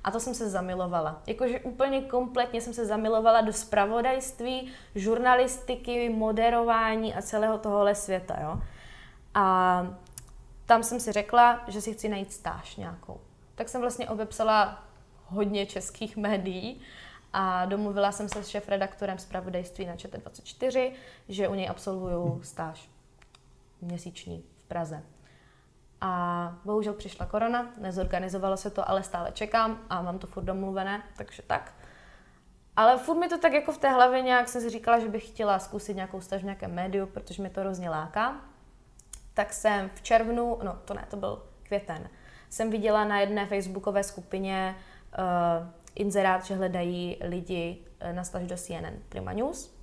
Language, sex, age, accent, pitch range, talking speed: Czech, female, 20-39, native, 180-225 Hz, 150 wpm